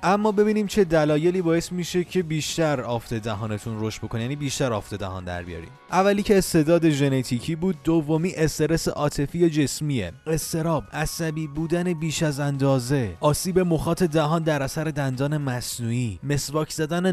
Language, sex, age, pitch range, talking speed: Persian, male, 30-49, 120-165 Hz, 145 wpm